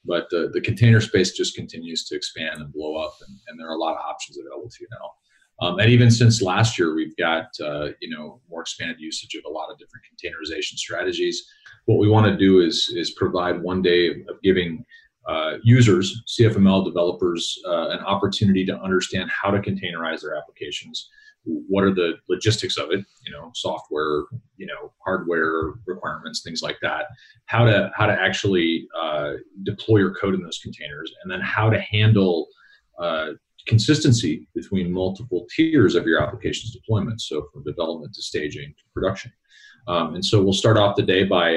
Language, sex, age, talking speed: English, male, 40-59, 185 wpm